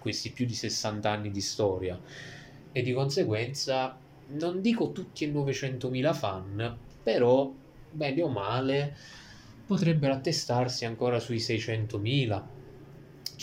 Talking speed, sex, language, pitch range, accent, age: 110 wpm, male, Italian, 110-135 Hz, native, 20-39